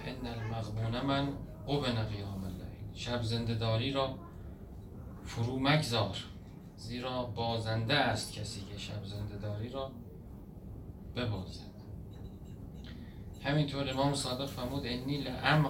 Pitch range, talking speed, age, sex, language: 100-130 Hz, 100 wpm, 40-59, male, Persian